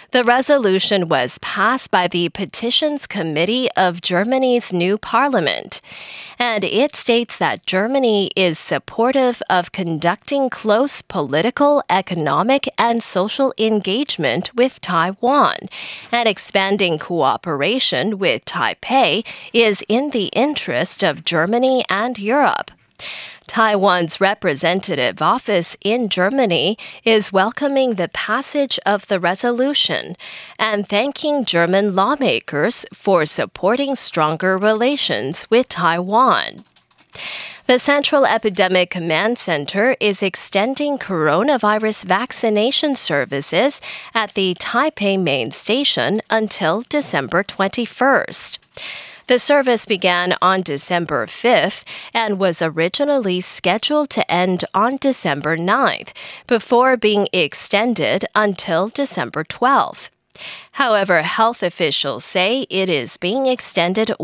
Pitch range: 180-255 Hz